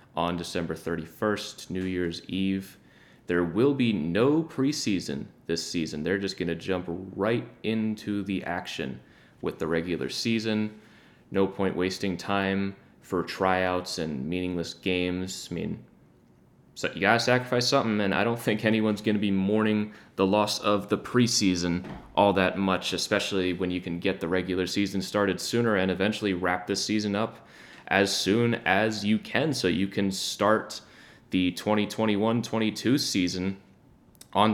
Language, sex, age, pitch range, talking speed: English, male, 20-39, 90-105 Hz, 150 wpm